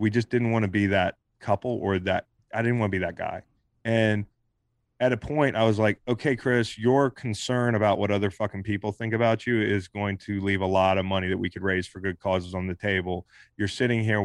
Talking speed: 240 wpm